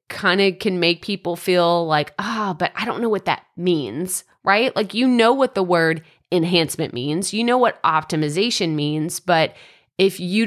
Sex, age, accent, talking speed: female, 30-49, American, 185 wpm